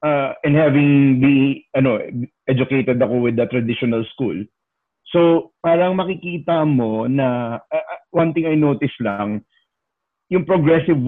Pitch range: 115-145 Hz